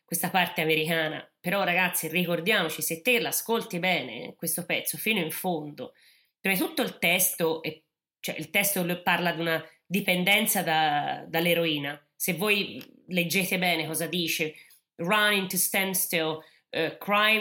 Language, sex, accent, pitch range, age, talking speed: Italian, female, native, 165-195 Hz, 30-49, 140 wpm